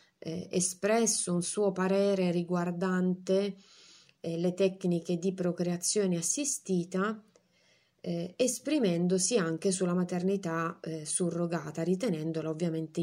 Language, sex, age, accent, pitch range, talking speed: Italian, female, 30-49, native, 170-195 Hz, 95 wpm